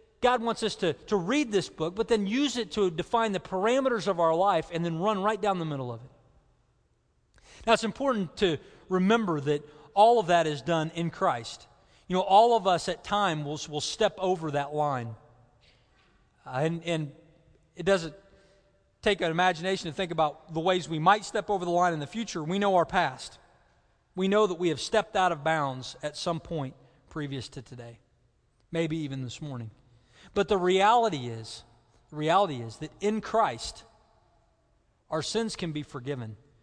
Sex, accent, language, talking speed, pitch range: male, American, English, 185 wpm, 130-195 Hz